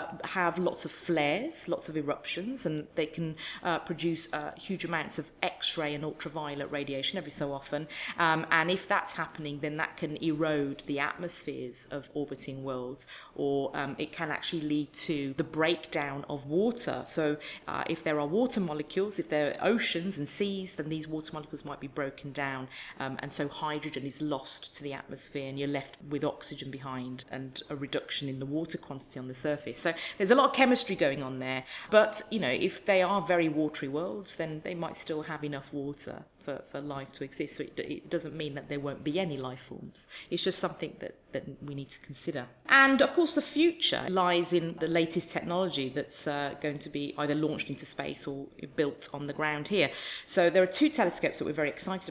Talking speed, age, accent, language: 205 wpm, 40-59, British, English